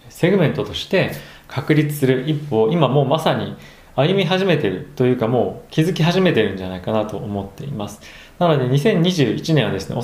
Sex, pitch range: male, 100-145 Hz